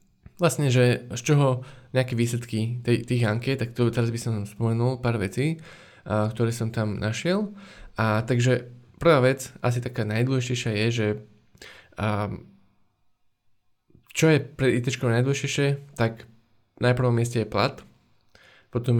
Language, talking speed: Slovak, 135 wpm